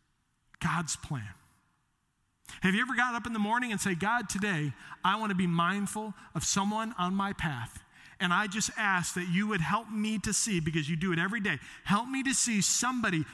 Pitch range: 160-235 Hz